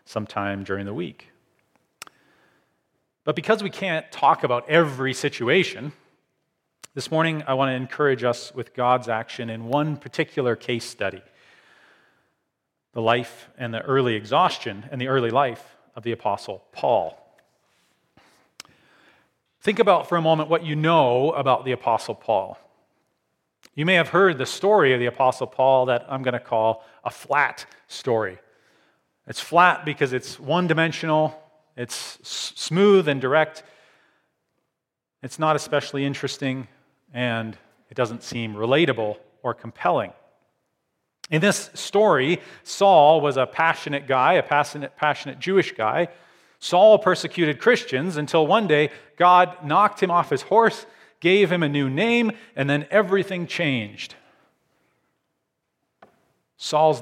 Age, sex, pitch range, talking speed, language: 40-59, male, 125-170 Hz, 135 wpm, English